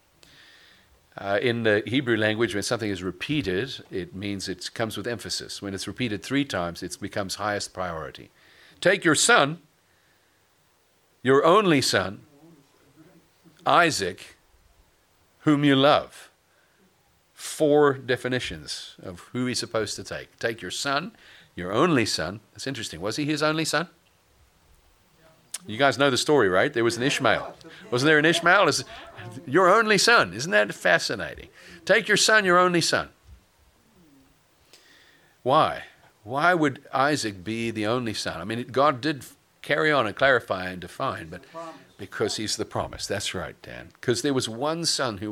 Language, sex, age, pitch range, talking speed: English, male, 50-69, 100-145 Hz, 150 wpm